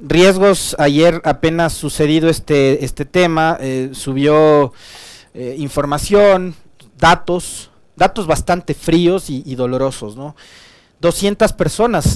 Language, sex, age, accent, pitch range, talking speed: Spanish, male, 40-59, Mexican, 130-160 Hz, 100 wpm